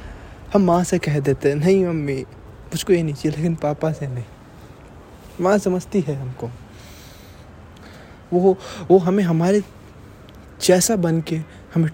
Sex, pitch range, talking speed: male, 120-175 Hz, 135 wpm